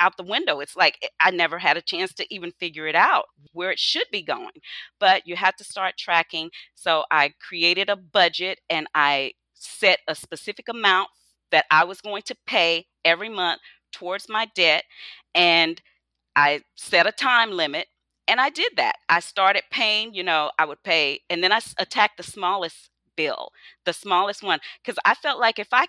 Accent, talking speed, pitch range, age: American, 190 wpm, 170-210 Hz, 40-59